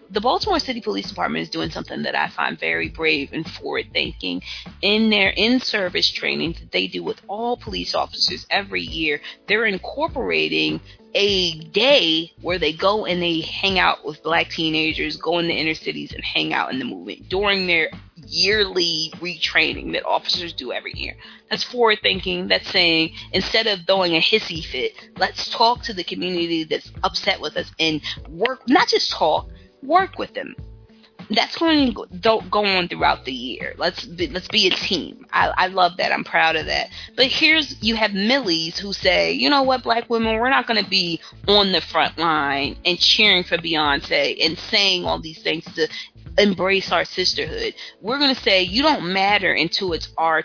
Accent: American